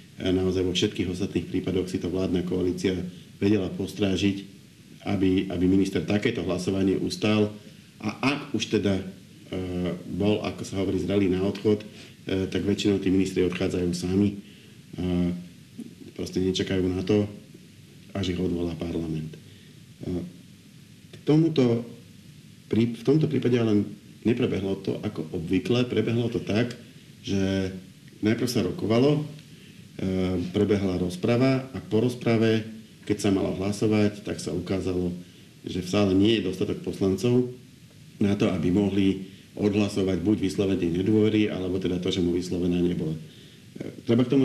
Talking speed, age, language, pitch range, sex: 135 wpm, 50-69, Slovak, 95-110 Hz, male